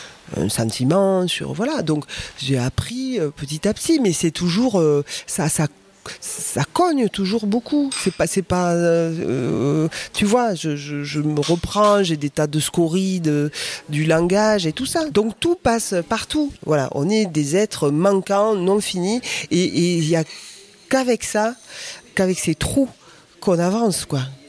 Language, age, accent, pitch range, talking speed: French, 40-59, French, 150-195 Hz, 160 wpm